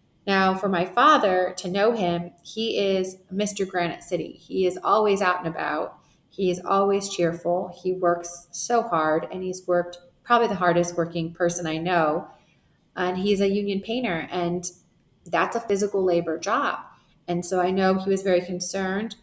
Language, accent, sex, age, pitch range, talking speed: English, American, female, 30-49, 175-190 Hz, 170 wpm